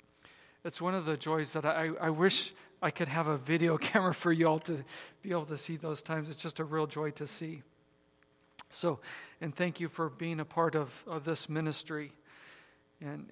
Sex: male